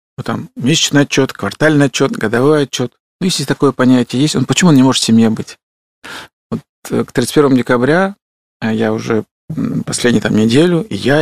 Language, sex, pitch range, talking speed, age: Russian, male, 120-150 Hz, 170 wpm, 50-69